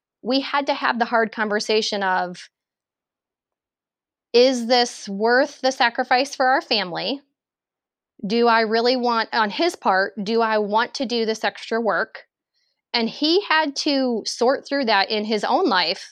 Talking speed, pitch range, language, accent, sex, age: 155 wpm, 210-265 Hz, English, American, female, 20-39